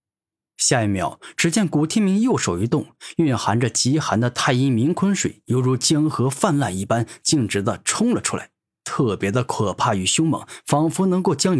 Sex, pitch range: male, 105-155 Hz